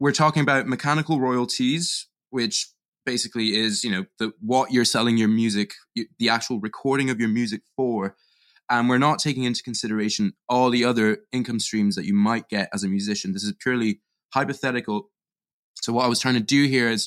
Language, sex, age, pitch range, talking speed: English, male, 20-39, 110-135 Hz, 195 wpm